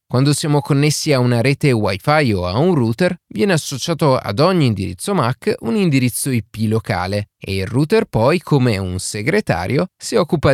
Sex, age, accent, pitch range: male, 30-49, native, 105-160 Hz